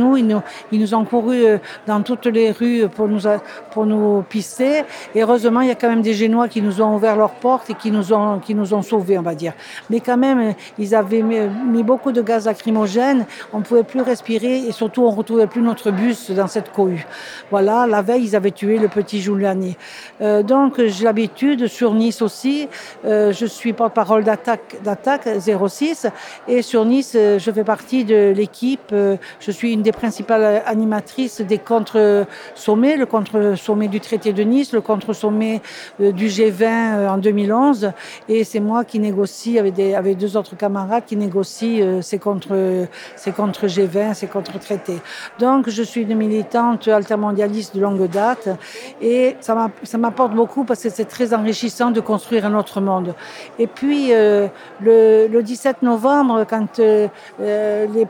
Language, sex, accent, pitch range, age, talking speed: French, female, French, 210-235 Hz, 60-79, 180 wpm